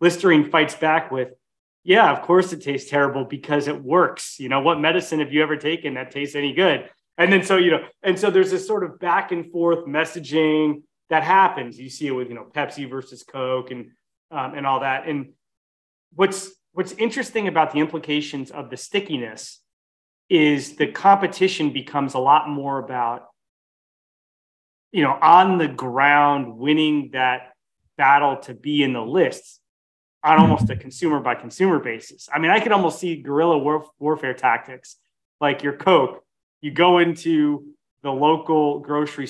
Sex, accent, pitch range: male, American, 130-165 Hz